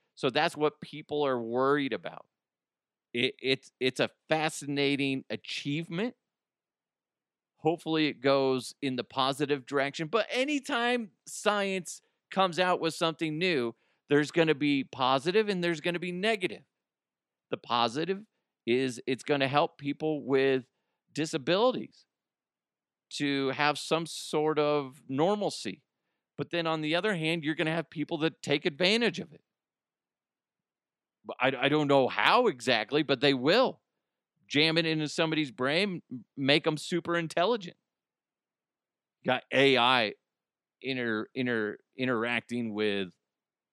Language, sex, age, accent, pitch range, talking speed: English, male, 40-59, American, 135-175 Hz, 125 wpm